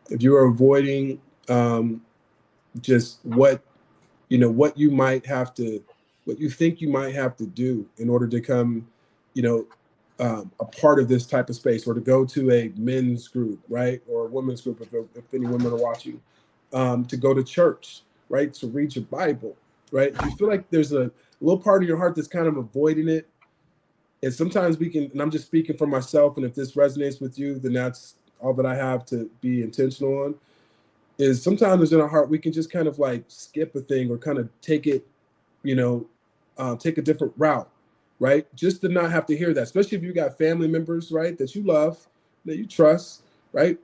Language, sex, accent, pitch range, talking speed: English, male, American, 125-150 Hz, 210 wpm